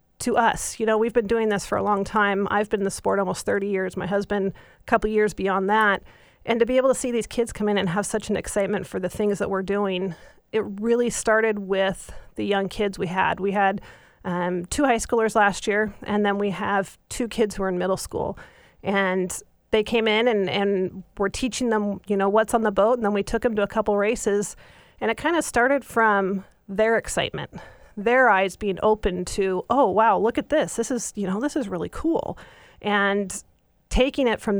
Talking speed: 225 wpm